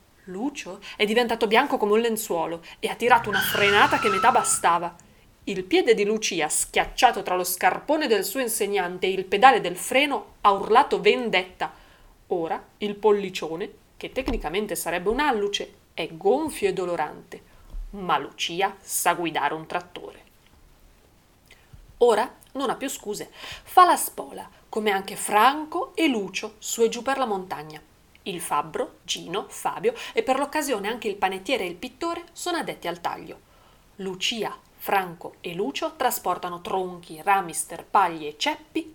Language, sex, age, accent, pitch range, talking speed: Italian, female, 30-49, native, 185-265 Hz, 150 wpm